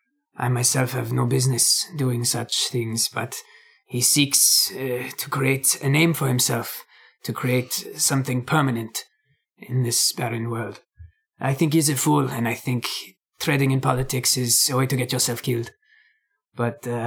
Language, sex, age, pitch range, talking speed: English, male, 20-39, 120-145 Hz, 160 wpm